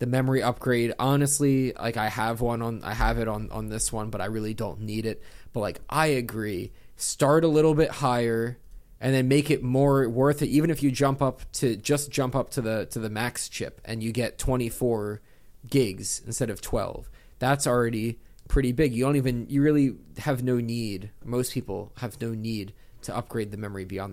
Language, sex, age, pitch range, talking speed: English, male, 20-39, 110-140 Hz, 205 wpm